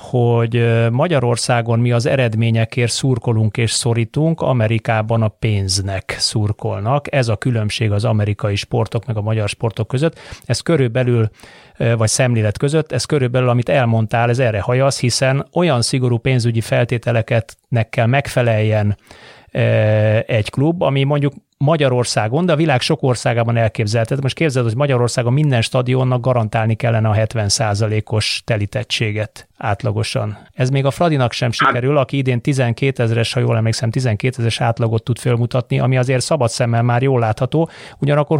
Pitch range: 115-130 Hz